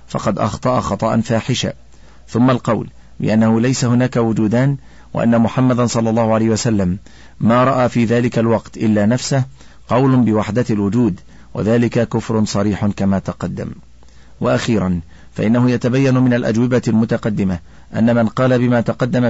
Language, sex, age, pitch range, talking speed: Arabic, male, 40-59, 100-120 Hz, 130 wpm